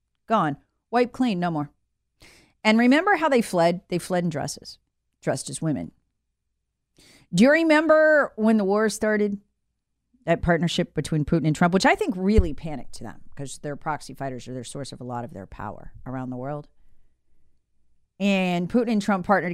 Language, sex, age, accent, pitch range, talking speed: English, female, 40-59, American, 145-225 Hz, 180 wpm